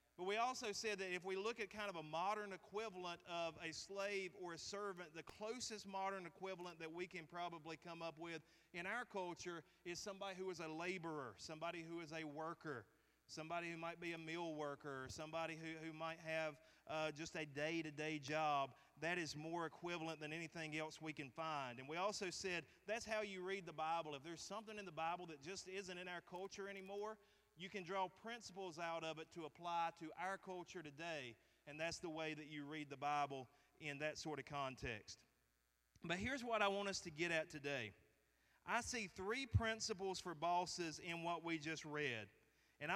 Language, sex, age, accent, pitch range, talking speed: English, male, 30-49, American, 155-190 Hz, 200 wpm